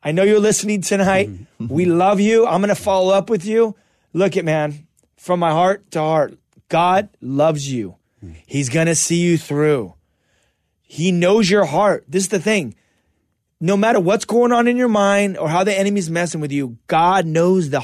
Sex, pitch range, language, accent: male, 165-215 Hz, English, American